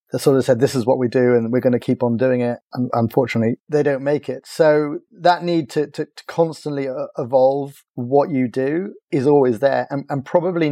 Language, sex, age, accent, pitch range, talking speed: English, male, 30-49, British, 120-140 Hz, 225 wpm